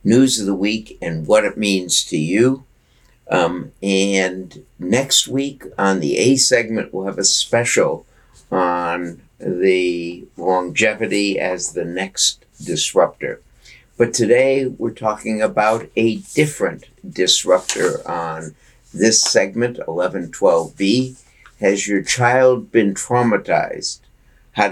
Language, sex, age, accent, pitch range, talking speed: English, male, 60-79, American, 95-120 Hz, 115 wpm